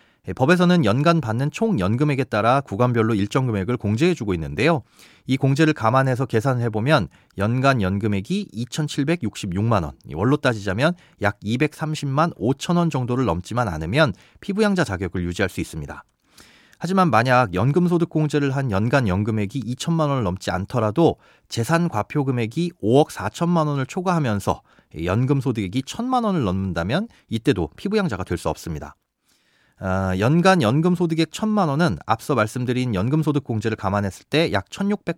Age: 40-59